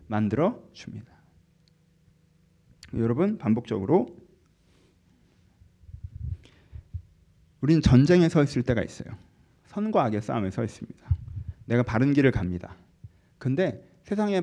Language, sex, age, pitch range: Korean, male, 40-59, 110-160 Hz